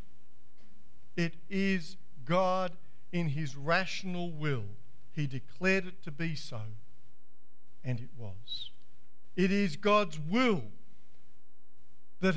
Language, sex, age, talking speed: English, male, 50-69, 100 wpm